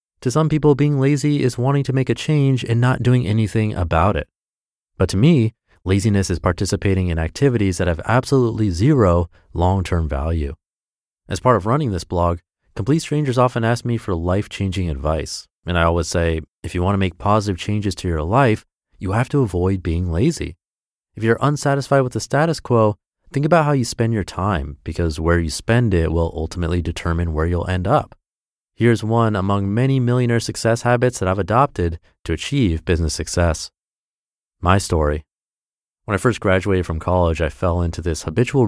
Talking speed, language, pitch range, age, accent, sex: 180 wpm, English, 90-120 Hz, 30-49, American, male